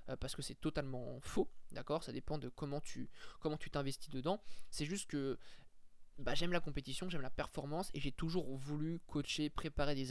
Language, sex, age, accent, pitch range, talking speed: French, male, 20-39, French, 135-165 Hz, 190 wpm